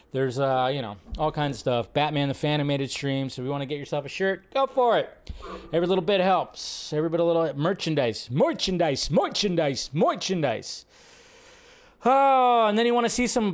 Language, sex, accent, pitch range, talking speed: English, male, American, 160-230 Hz, 215 wpm